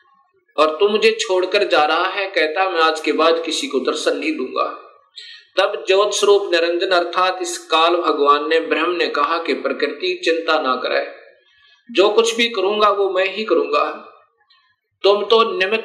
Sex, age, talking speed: male, 50-69, 120 wpm